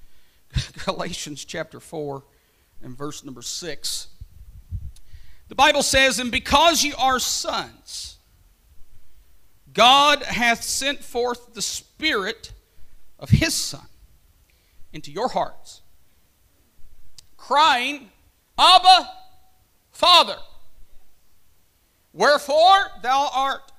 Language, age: English, 50-69